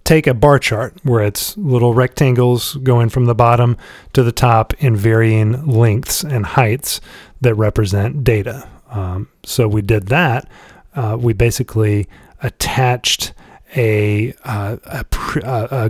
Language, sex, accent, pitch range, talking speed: English, male, American, 110-135 Hz, 130 wpm